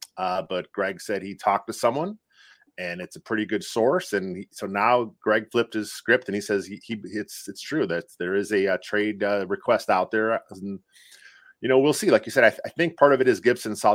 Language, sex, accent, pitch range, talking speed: English, male, American, 95-125 Hz, 250 wpm